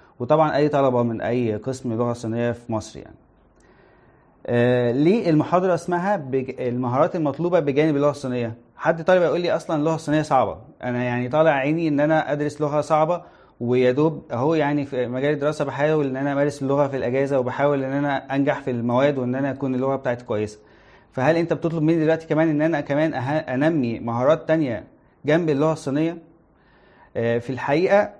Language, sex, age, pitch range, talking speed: Arabic, male, 20-39, 125-155 Hz, 170 wpm